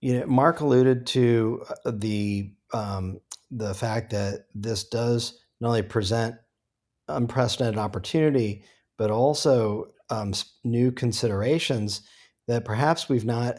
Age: 40-59